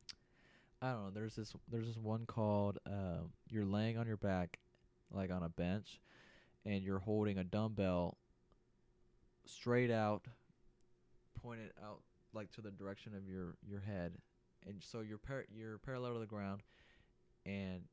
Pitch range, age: 95-115 Hz, 20-39